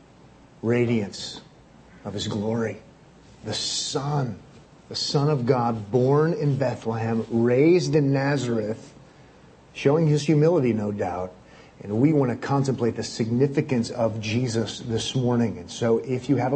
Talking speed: 135 wpm